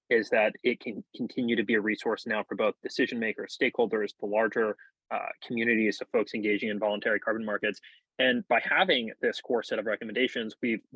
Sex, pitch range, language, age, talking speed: male, 105-120 Hz, English, 20-39, 190 wpm